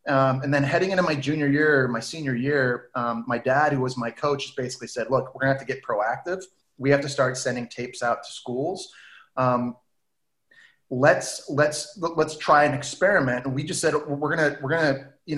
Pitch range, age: 130-155 Hz, 30-49